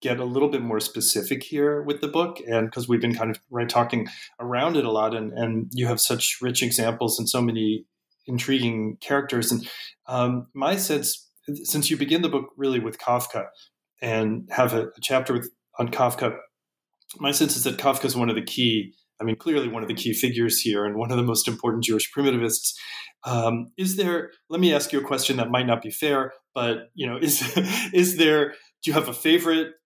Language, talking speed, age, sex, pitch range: English, 215 wpm, 30-49, male, 115-140 Hz